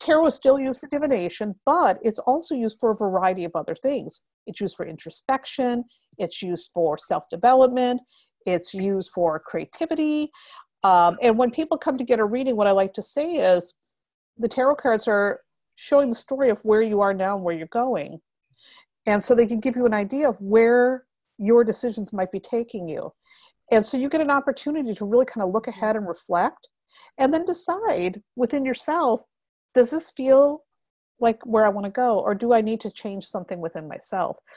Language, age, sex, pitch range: English, 50-69, female, 195-260 Hz